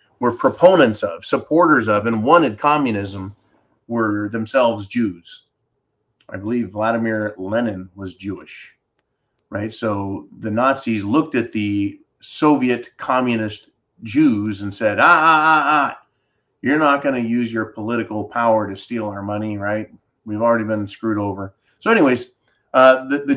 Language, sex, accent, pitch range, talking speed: English, male, American, 105-125 Hz, 145 wpm